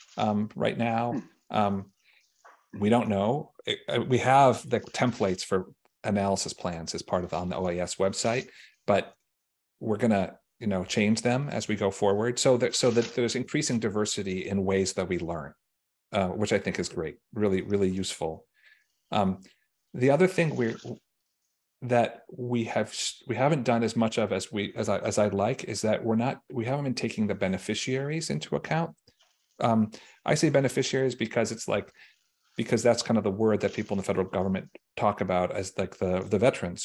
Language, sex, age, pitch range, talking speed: English, male, 40-59, 95-120 Hz, 185 wpm